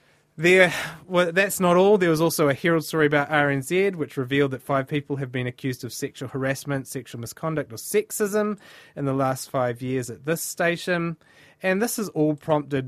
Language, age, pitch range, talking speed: English, 30-49, 125-155 Hz, 190 wpm